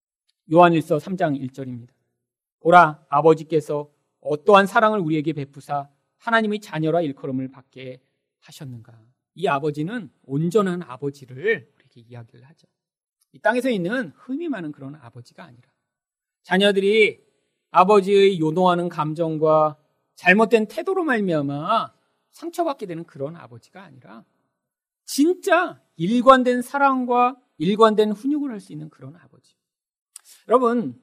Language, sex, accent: Korean, male, native